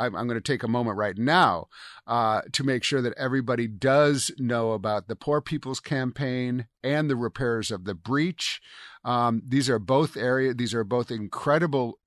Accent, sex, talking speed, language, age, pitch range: American, male, 180 wpm, English, 50-69, 120-160 Hz